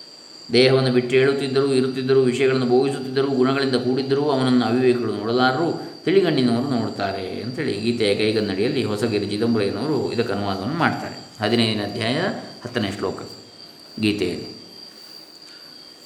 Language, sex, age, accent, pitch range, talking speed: Kannada, male, 20-39, native, 115-135 Hz, 100 wpm